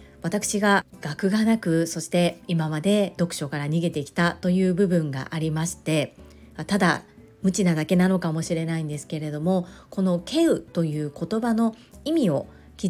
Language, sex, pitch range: Japanese, female, 170-225 Hz